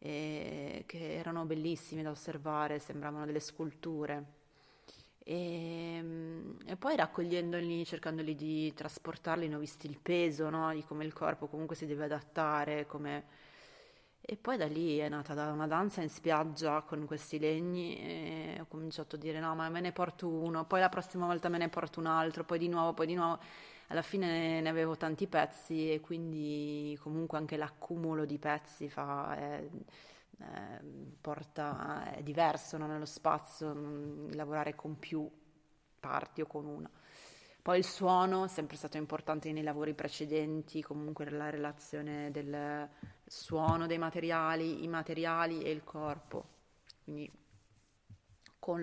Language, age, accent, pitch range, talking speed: Italian, 30-49, native, 150-165 Hz, 150 wpm